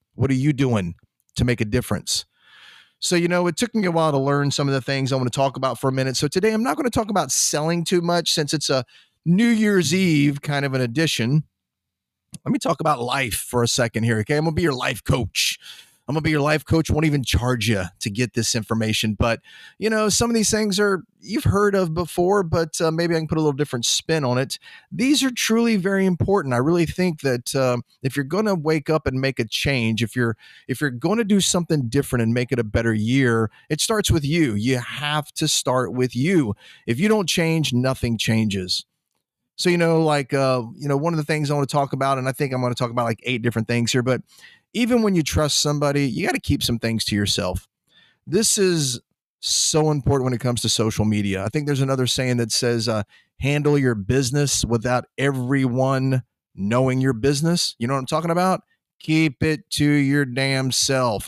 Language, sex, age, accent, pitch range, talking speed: English, male, 30-49, American, 120-160 Hz, 225 wpm